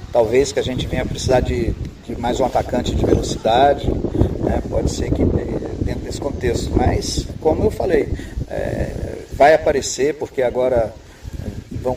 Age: 40-59